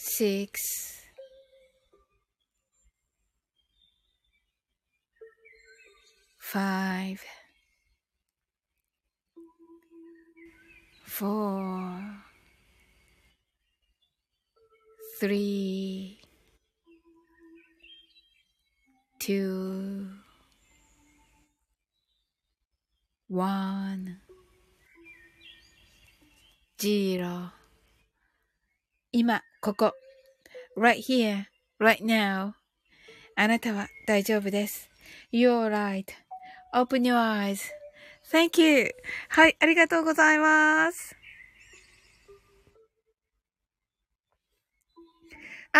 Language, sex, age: Japanese, female, 30-49